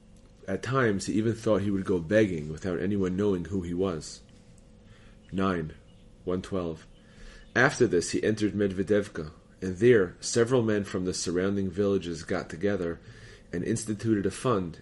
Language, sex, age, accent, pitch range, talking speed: English, male, 30-49, American, 90-110 Hz, 145 wpm